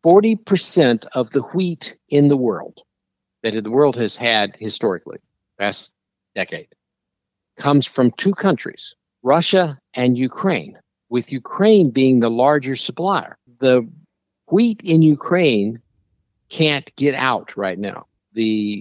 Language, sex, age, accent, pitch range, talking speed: English, male, 50-69, American, 105-145 Hz, 120 wpm